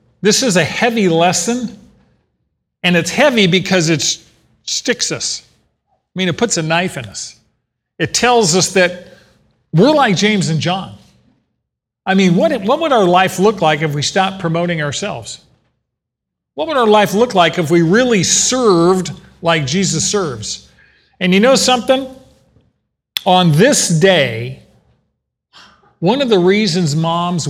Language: English